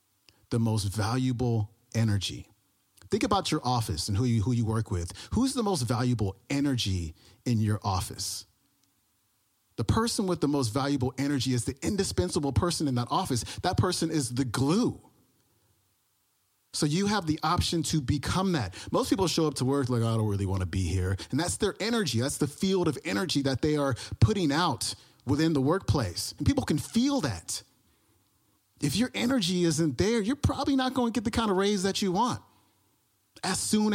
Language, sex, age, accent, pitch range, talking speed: English, male, 30-49, American, 105-155 Hz, 185 wpm